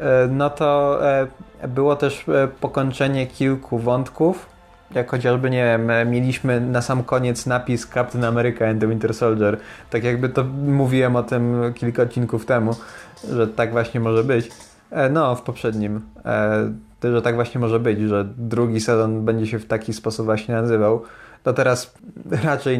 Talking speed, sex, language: 150 wpm, male, Polish